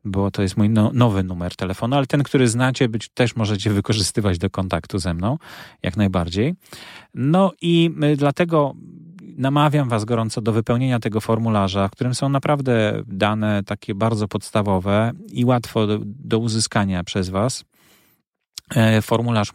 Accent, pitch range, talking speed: native, 95-120 Hz, 155 wpm